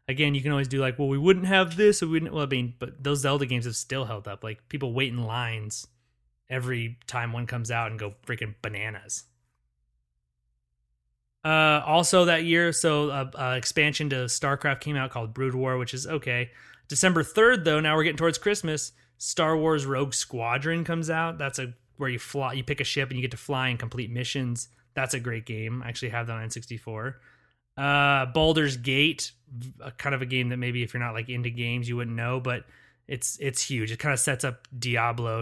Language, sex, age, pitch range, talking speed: English, male, 30-49, 120-150 Hz, 215 wpm